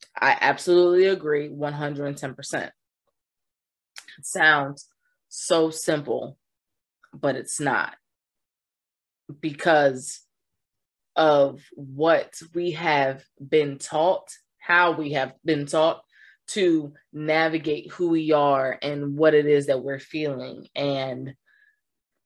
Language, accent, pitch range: English, American, 145-180 Hz